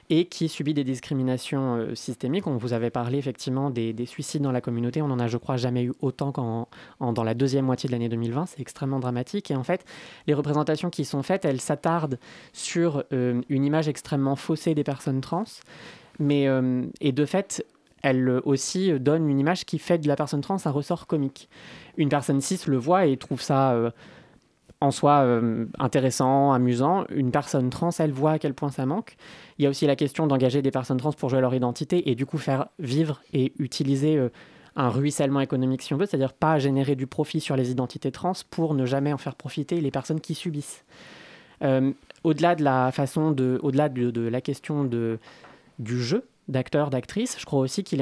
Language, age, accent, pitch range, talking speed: French, 20-39, French, 130-160 Hz, 205 wpm